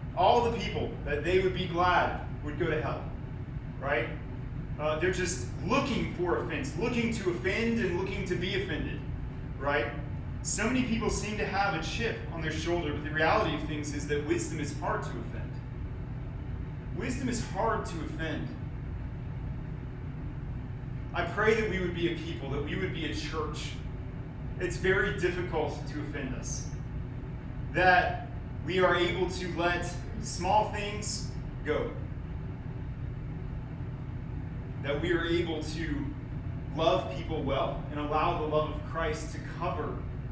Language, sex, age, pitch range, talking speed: English, male, 30-49, 125-155 Hz, 150 wpm